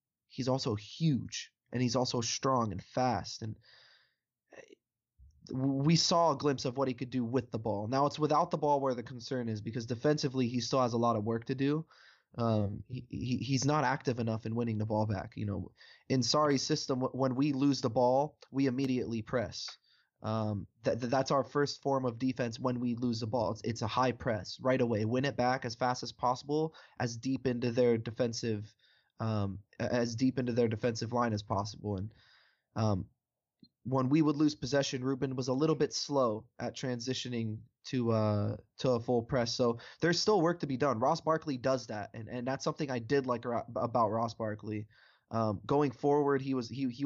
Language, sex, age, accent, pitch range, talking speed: English, male, 20-39, American, 115-135 Hz, 200 wpm